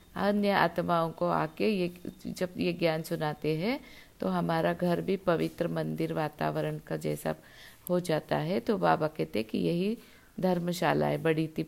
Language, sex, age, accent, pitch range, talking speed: Hindi, female, 50-69, native, 155-215 Hz, 165 wpm